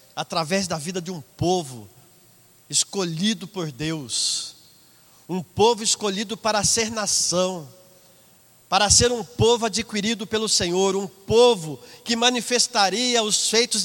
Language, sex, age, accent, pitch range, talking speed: Portuguese, male, 50-69, Brazilian, 190-270 Hz, 120 wpm